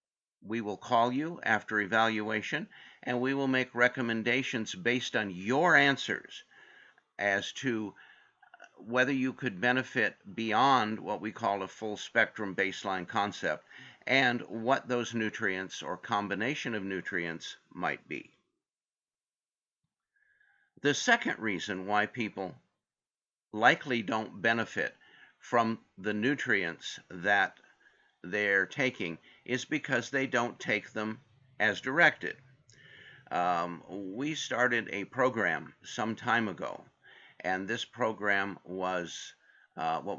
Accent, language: American, English